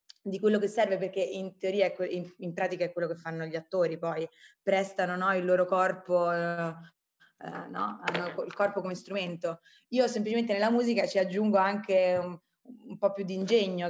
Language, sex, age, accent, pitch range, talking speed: Italian, female, 20-39, native, 170-220 Hz, 175 wpm